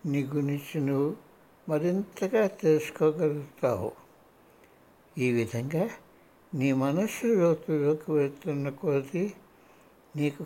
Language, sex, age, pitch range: Hindi, male, 60-79, 140-180 Hz